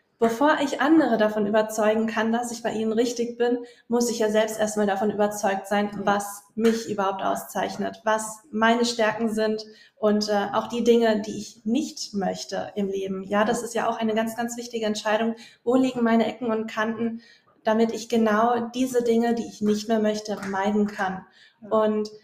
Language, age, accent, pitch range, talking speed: German, 20-39, German, 210-235 Hz, 185 wpm